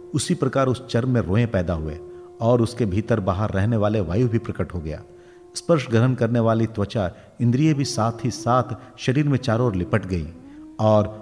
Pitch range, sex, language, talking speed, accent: 105-130 Hz, male, Hindi, 195 wpm, native